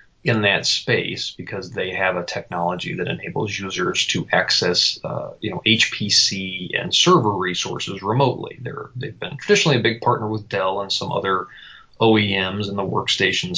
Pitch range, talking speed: 95-120 Hz, 160 wpm